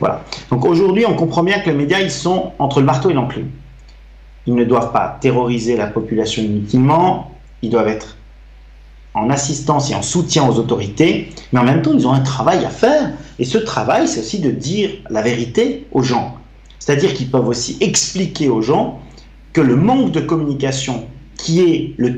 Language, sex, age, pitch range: French, male, 40-59, 120-165 Hz